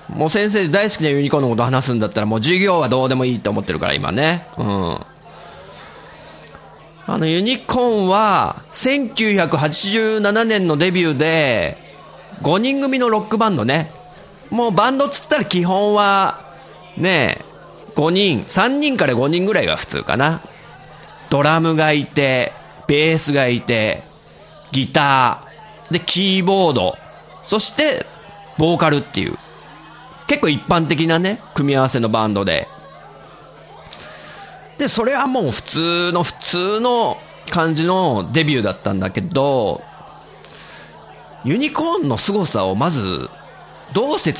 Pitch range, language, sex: 140-205 Hz, Japanese, male